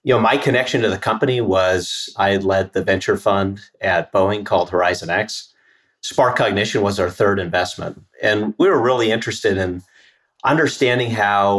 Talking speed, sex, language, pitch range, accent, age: 170 wpm, male, English, 95-110 Hz, American, 40-59